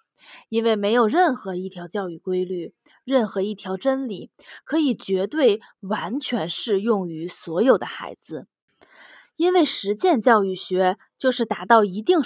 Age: 20-39